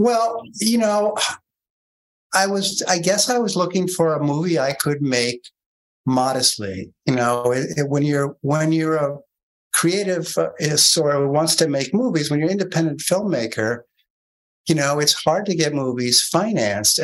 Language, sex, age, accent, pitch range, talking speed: English, male, 60-79, American, 125-160 Hz, 155 wpm